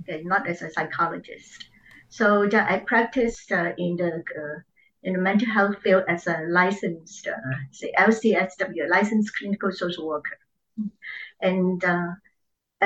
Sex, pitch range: male, 175-225 Hz